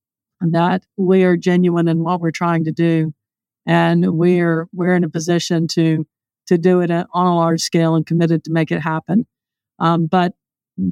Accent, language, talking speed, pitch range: American, English, 175 wpm, 165-180 Hz